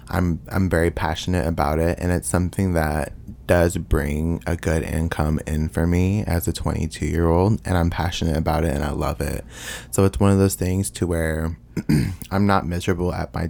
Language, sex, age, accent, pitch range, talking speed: English, male, 20-39, American, 80-90 Hz, 190 wpm